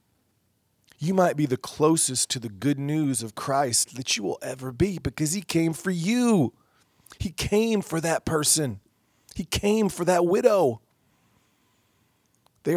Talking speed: 150 wpm